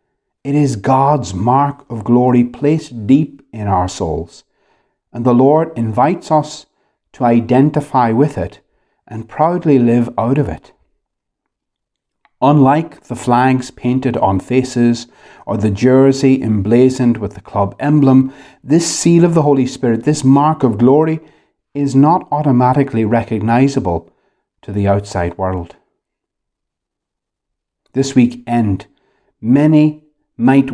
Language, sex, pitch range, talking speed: English, male, 115-145 Hz, 125 wpm